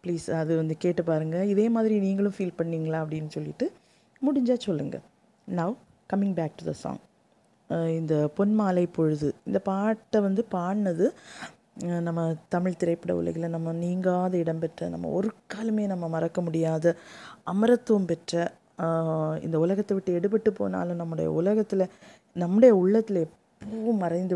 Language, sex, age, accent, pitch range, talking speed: Tamil, female, 20-39, native, 160-195 Hz, 135 wpm